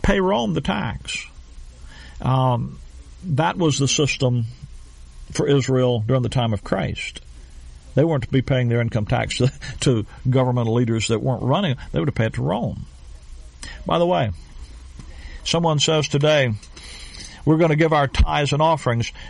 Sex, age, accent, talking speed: male, 50-69, American, 160 wpm